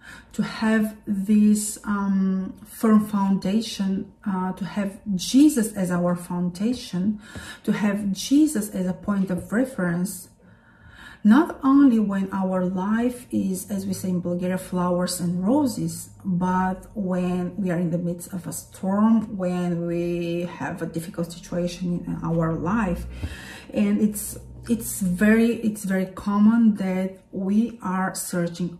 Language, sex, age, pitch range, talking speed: English, female, 40-59, 185-215 Hz, 135 wpm